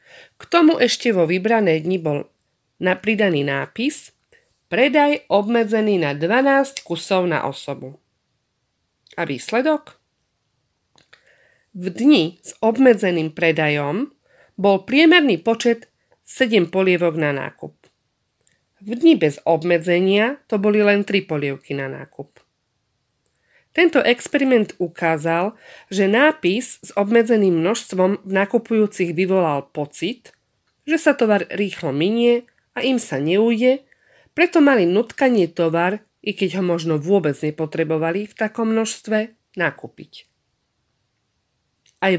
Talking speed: 110 wpm